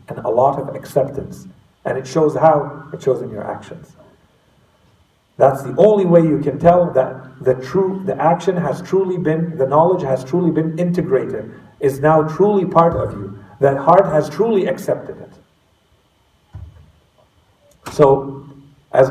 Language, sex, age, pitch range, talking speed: English, male, 50-69, 130-170 Hz, 155 wpm